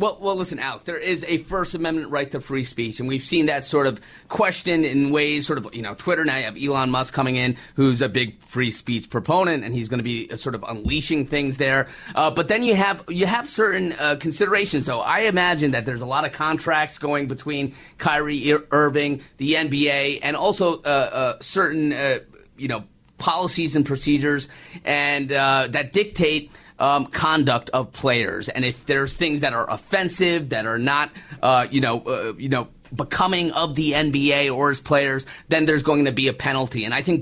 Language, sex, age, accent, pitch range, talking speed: English, male, 30-49, American, 135-165 Hz, 205 wpm